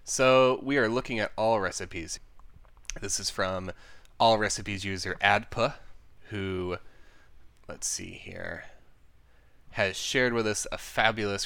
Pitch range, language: 95-135 Hz, English